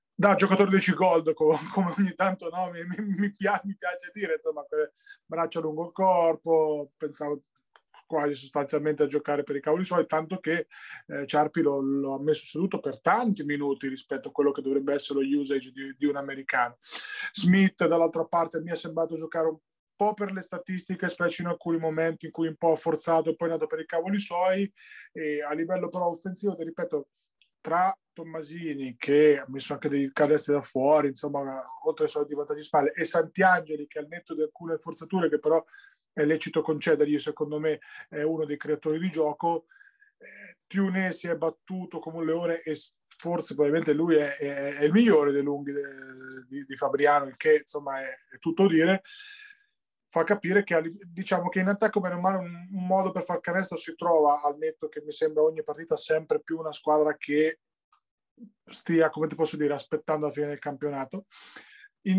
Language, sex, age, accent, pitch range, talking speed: Italian, male, 20-39, native, 150-190 Hz, 185 wpm